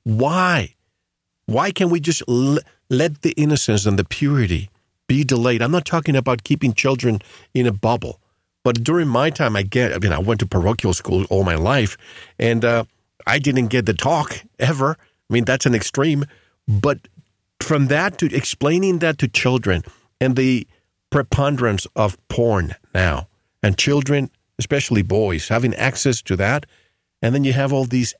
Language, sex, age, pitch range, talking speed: English, male, 50-69, 105-140 Hz, 170 wpm